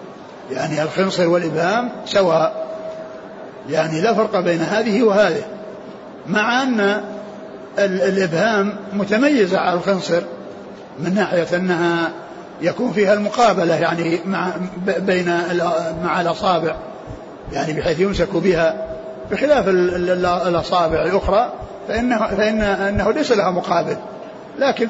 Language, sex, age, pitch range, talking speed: Arabic, male, 50-69, 165-210 Hz, 95 wpm